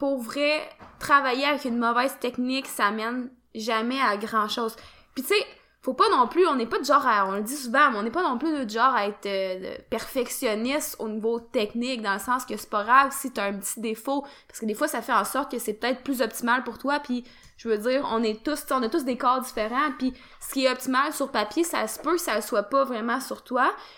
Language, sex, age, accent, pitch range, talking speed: French, female, 20-39, Canadian, 230-280 Hz, 250 wpm